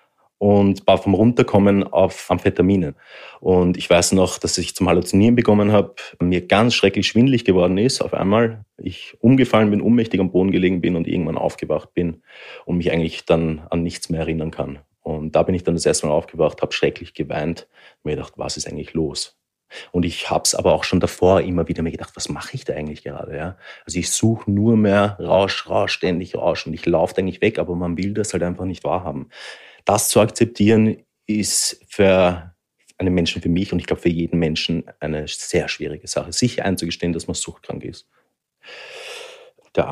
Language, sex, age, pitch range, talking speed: German, male, 30-49, 85-105 Hz, 195 wpm